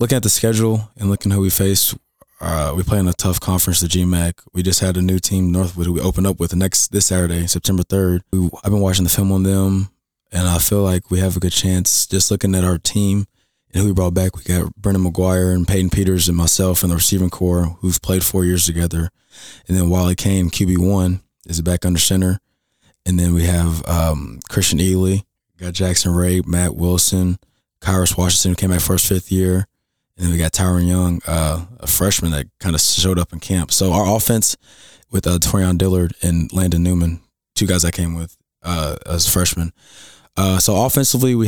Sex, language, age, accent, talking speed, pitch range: male, English, 20-39, American, 215 wpm, 85-95 Hz